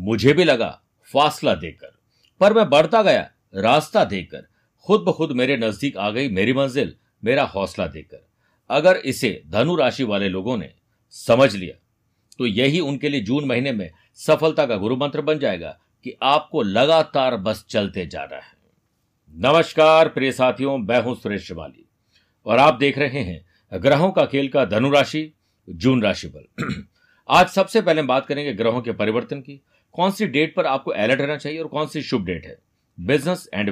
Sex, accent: male, native